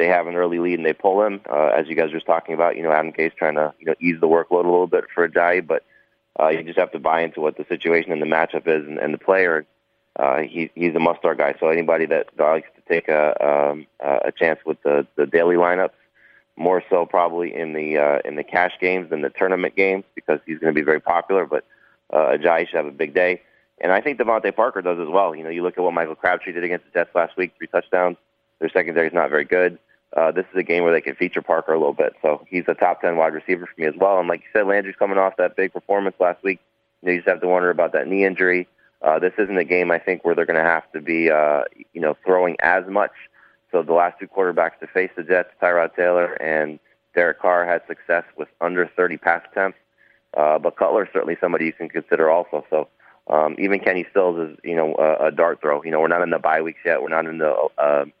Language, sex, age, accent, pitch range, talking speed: English, male, 30-49, American, 80-90 Hz, 260 wpm